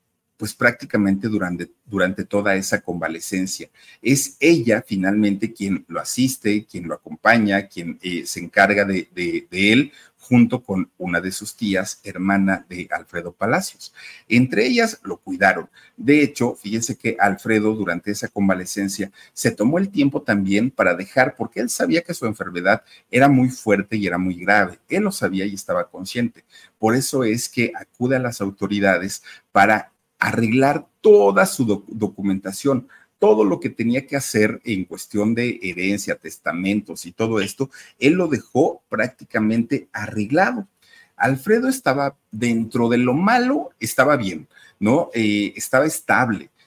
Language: Spanish